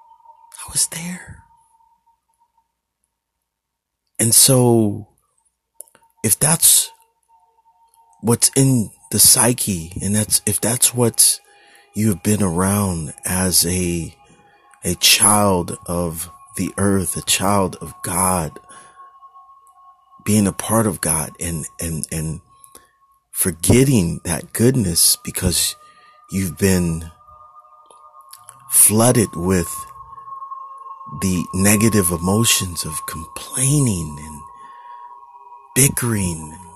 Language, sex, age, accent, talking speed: English, male, 30-49, American, 85 wpm